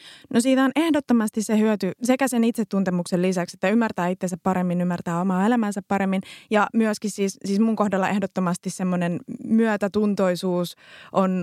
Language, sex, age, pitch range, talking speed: Finnish, female, 20-39, 180-215 Hz, 145 wpm